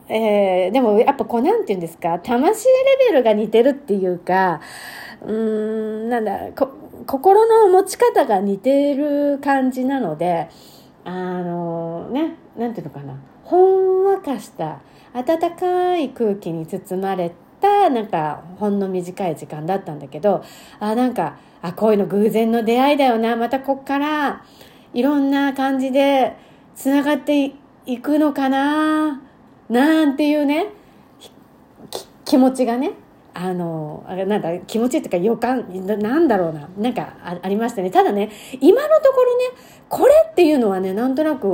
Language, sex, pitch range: Japanese, female, 190-300 Hz